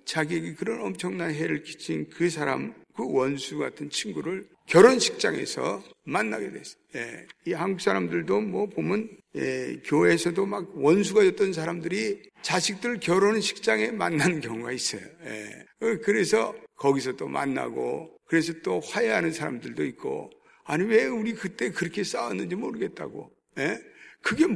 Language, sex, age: Korean, male, 50-69